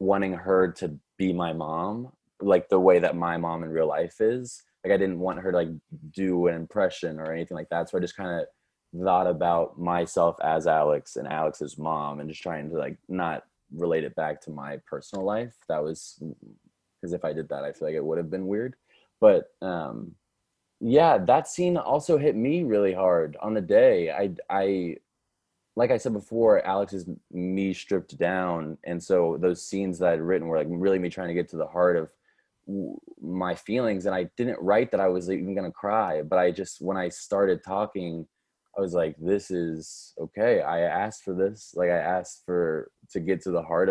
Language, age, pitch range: English, 20-39, 85-95 Hz